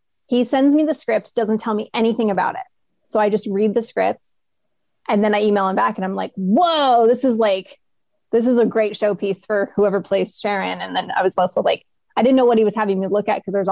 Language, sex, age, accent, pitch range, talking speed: English, female, 20-39, American, 205-250 Hz, 255 wpm